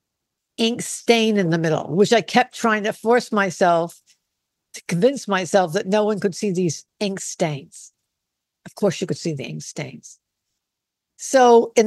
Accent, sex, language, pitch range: American, female, English, 175-230 Hz